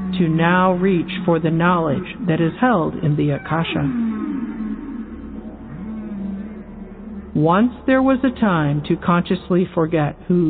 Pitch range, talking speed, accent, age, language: 155-235 Hz, 120 wpm, American, 60-79, English